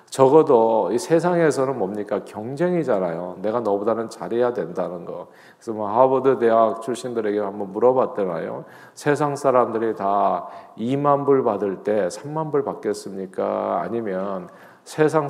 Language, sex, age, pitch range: Korean, male, 40-59, 110-160 Hz